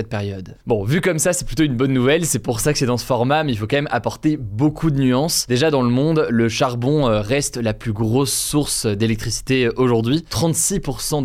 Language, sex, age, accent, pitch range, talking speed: French, male, 20-39, French, 110-140 Hz, 225 wpm